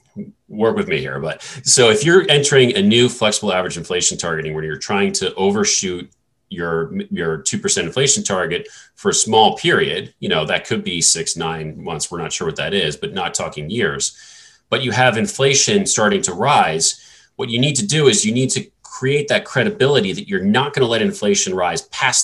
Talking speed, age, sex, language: 200 wpm, 30-49, male, English